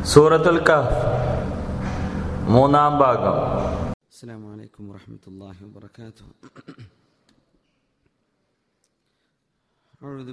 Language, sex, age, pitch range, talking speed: Malayalam, male, 40-59, 115-130 Hz, 60 wpm